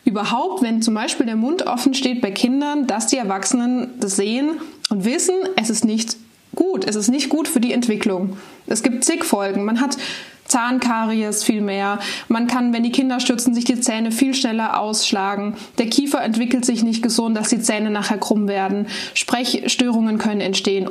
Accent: German